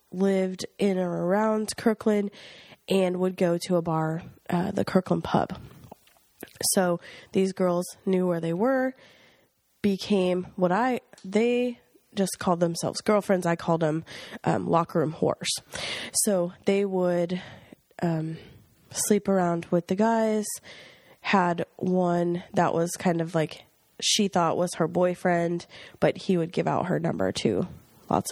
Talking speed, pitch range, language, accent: 140 wpm, 175-210 Hz, English, American